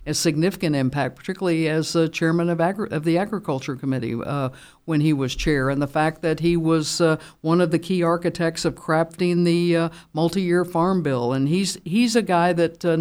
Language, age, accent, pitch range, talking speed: English, 60-79, American, 145-175 Hz, 205 wpm